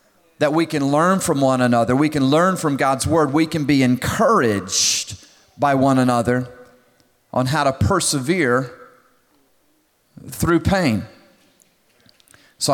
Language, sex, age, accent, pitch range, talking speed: English, male, 40-59, American, 130-160 Hz, 125 wpm